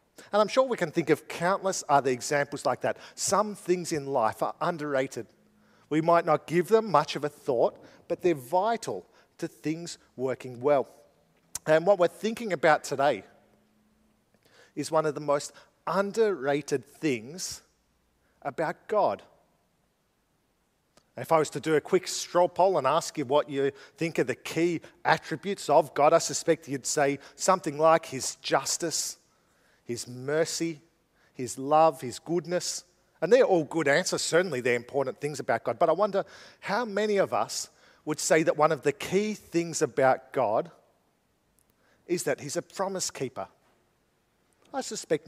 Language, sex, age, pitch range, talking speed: English, male, 40-59, 145-185 Hz, 160 wpm